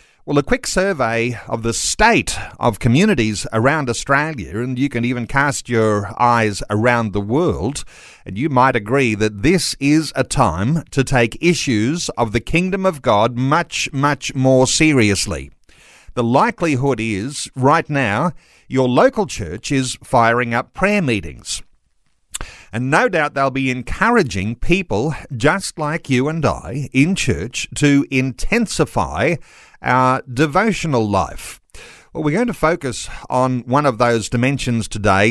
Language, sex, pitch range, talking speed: English, male, 115-155 Hz, 145 wpm